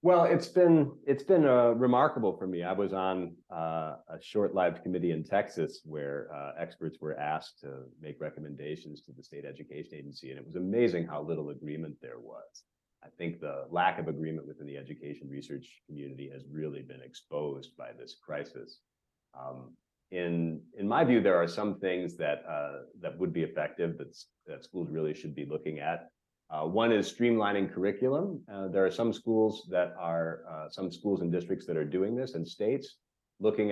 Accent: American